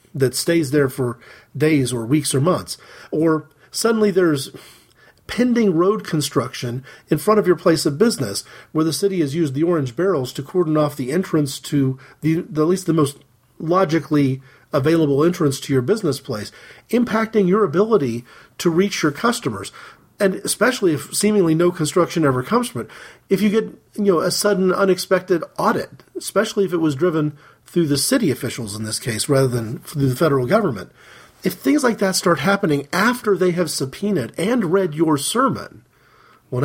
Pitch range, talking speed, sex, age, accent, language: 140-185 Hz, 175 wpm, male, 40-59, American, English